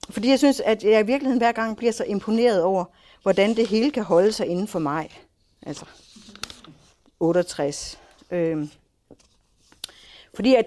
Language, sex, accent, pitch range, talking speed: Danish, female, native, 175-260 Hz, 150 wpm